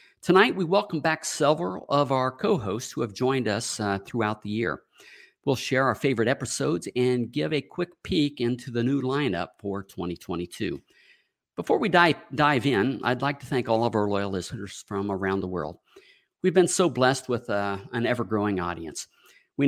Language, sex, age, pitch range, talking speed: English, male, 50-69, 110-140 Hz, 185 wpm